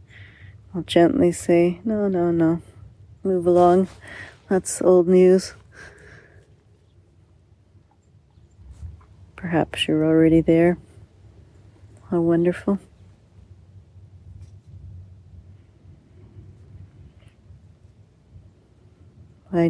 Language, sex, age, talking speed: English, female, 40-59, 55 wpm